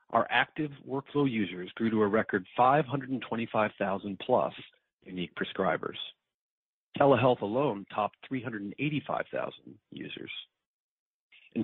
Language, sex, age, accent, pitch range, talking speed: English, male, 40-59, American, 100-130 Hz, 90 wpm